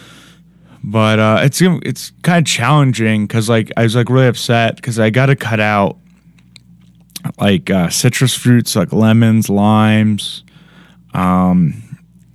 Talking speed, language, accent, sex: 135 wpm, English, American, male